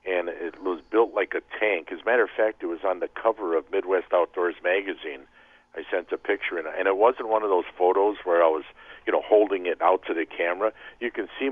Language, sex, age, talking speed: English, male, 50-69, 240 wpm